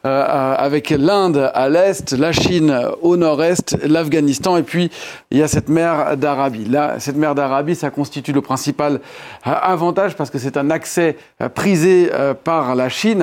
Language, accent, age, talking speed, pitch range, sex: French, French, 40-59, 175 wpm, 140-170 Hz, male